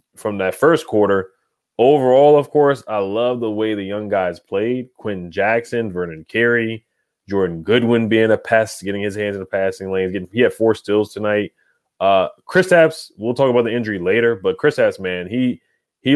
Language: English